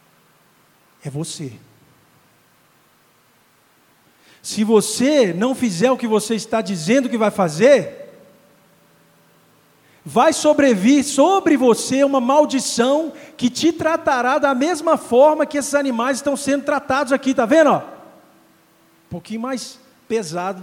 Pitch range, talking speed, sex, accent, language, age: 205-280 Hz, 115 wpm, male, Brazilian, Portuguese, 50-69